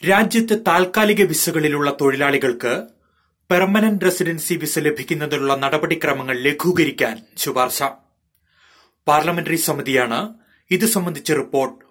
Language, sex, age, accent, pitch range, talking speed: Malayalam, male, 30-49, native, 140-170 Hz, 80 wpm